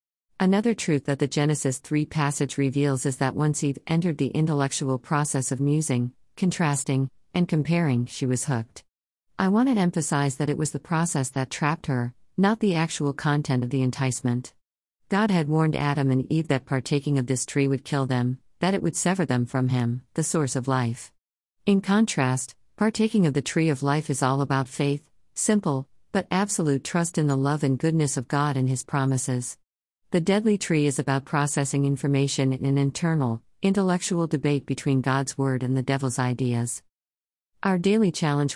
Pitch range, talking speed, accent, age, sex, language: 130-160 Hz, 180 wpm, American, 50-69, female, English